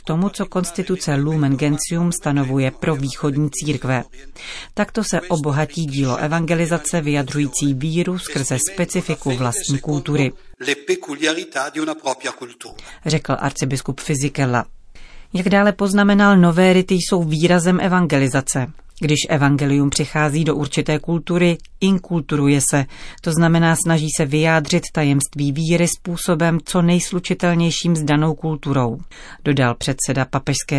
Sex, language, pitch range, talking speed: female, Czech, 140-170 Hz, 110 wpm